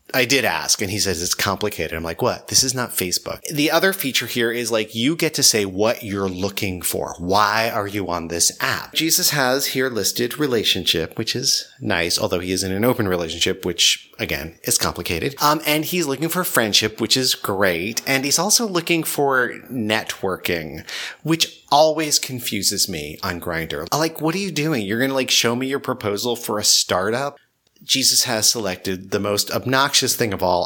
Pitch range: 100-145 Hz